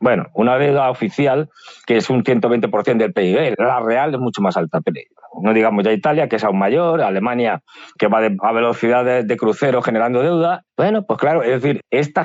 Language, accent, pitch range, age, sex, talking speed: Spanish, Spanish, 110-165 Hz, 40-59, male, 190 wpm